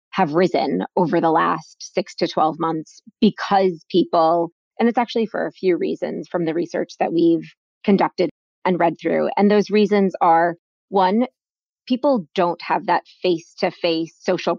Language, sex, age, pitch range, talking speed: English, female, 20-39, 170-215 Hz, 165 wpm